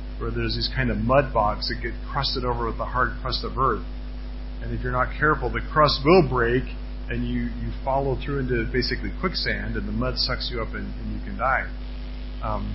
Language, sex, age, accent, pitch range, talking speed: English, male, 40-59, American, 120-150 Hz, 210 wpm